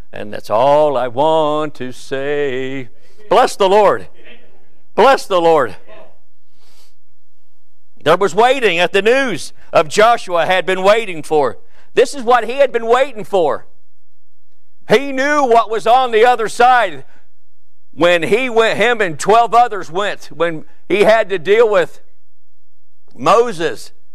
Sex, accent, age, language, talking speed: male, American, 60-79, English, 140 wpm